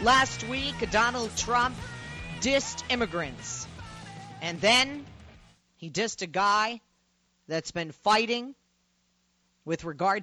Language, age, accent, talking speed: English, 40-59, American, 100 wpm